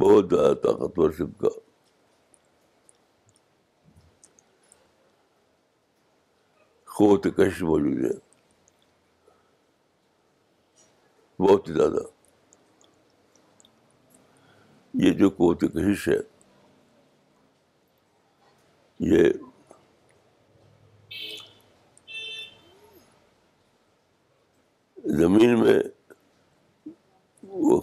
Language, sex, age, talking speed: Urdu, male, 60-79, 40 wpm